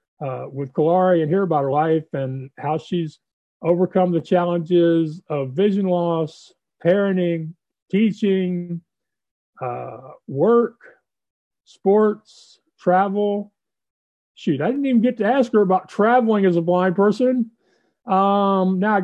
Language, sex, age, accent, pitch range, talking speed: English, male, 40-59, American, 155-190 Hz, 125 wpm